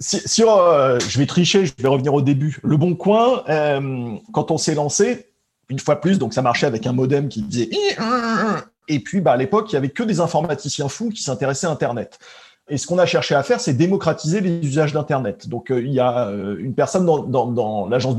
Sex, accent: male, French